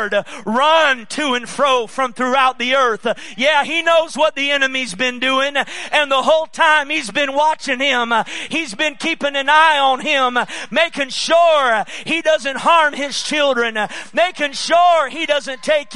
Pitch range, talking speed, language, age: 240-285 Hz, 160 wpm, English, 40-59